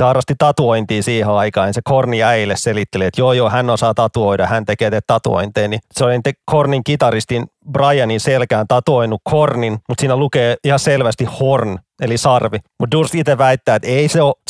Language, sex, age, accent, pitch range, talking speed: Finnish, male, 30-49, native, 110-140 Hz, 175 wpm